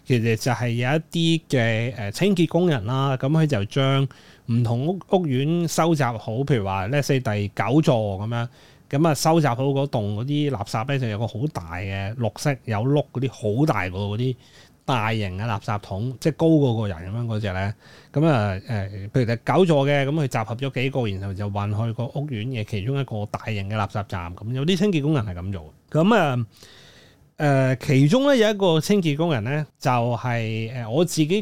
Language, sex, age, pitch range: Chinese, male, 20-39, 110-150 Hz